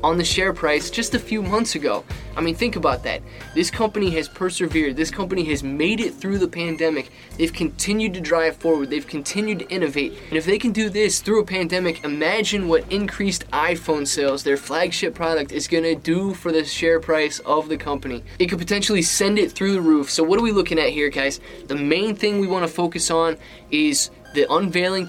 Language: English